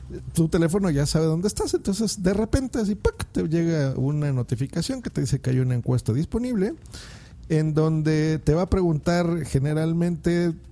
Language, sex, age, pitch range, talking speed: Spanish, male, 50-69, 120-170 Hz, 160 wpm